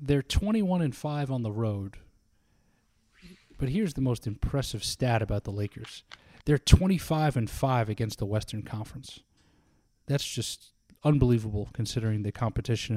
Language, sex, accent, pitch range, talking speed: English, male, American, 105-125 Hz, 140 wpm